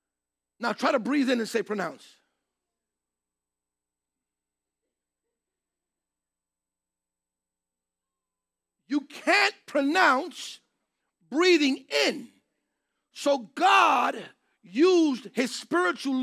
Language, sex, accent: English, male, American